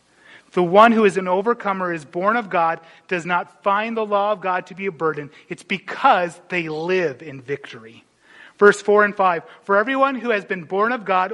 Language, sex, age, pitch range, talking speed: English, male, 30-49, 170-210 Hz, 205 wpm